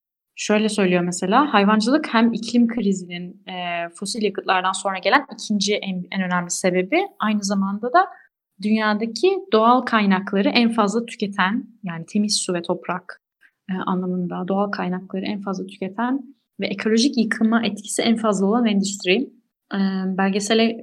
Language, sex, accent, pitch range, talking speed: Turkish, female, native, 185-225 Hz, 140 wpm